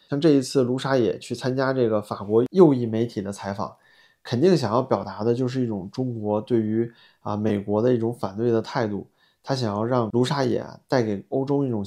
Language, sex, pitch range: Chinese, male, 110-135 Hz